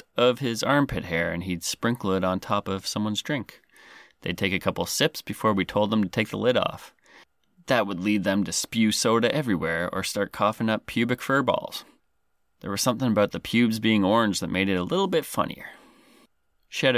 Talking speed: 205 wpm